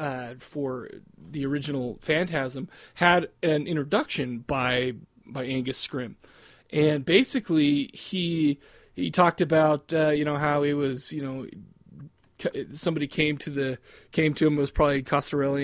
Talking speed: 140 wpm